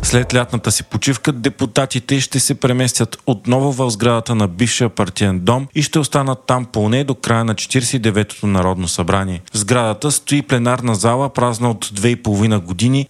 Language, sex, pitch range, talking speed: Bulgarian, male, 105-125 Hz, 160 wpm